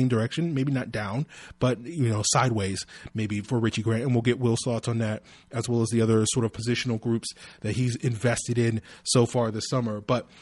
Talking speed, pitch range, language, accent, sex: 215 wpm, 110-125 Hz, English, American, male